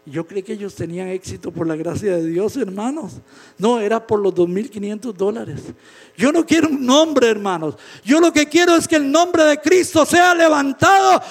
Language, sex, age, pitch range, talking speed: English, male, 50-69, 180-300 Hz, 190 wpm